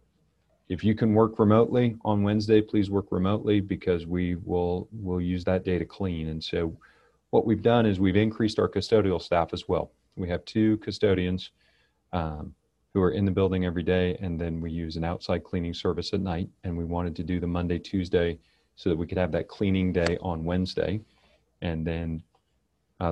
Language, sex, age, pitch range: English, male, 40-59, 85-100 Hz